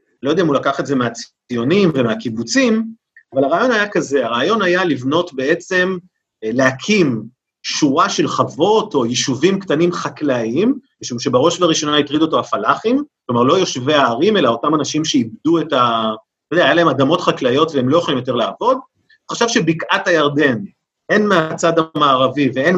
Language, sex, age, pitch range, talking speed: Hebrew, male, 30-49, 135-190 Hz, 155 wpm